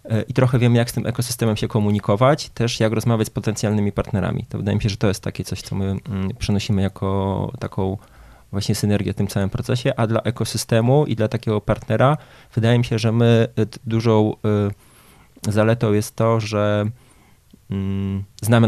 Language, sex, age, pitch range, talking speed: Polish, male, 20-39, 105-120 Hz, 170 wpm